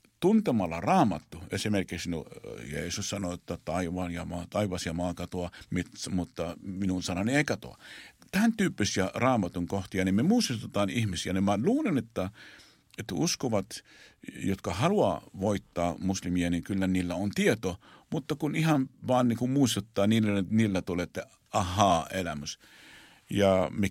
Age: 50-69